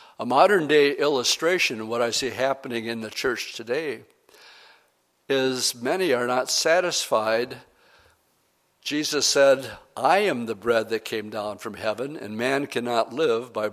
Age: 60-79